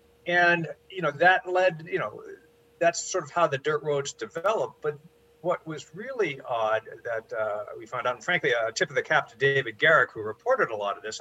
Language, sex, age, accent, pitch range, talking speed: English, male, 50-69, American, 135-185 Hz, 225 wpm